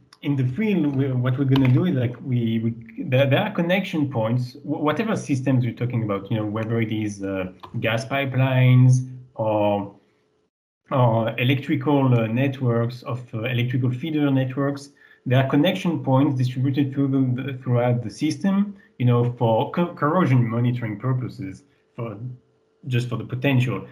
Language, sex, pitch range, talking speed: English, male, 115-140 Hz, 160 wpm